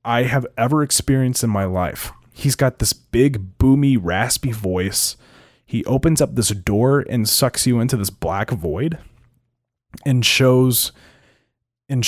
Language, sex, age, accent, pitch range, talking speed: English, male, 20-39, American, 100-125 Hz, 145 wpm